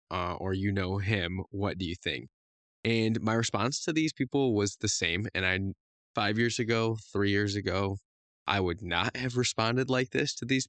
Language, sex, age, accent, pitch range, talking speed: English, male, 20-39, American, 95-110 Hz, 195 wpm